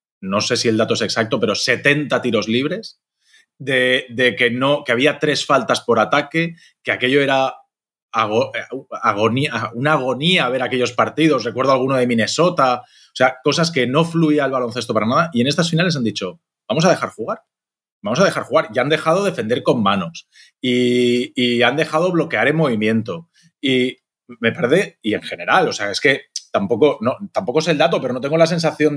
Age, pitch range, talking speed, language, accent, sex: 30-49, 120-155 Hz, 195 wpm, Spanish, Spanish, male